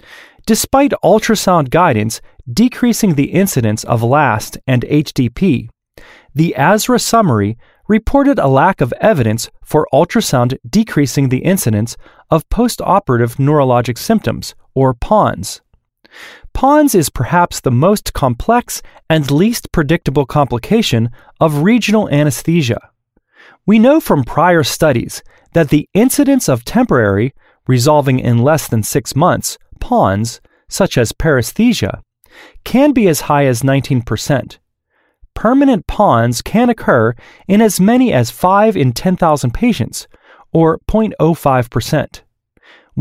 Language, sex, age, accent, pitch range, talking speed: English, male, 30-49, American, 125-210 Hz, 115 wpm